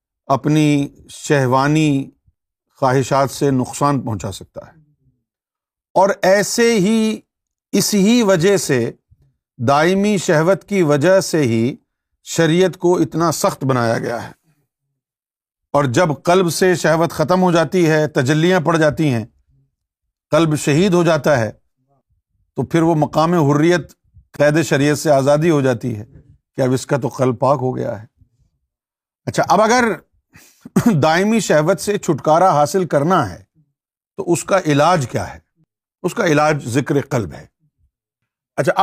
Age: 50-69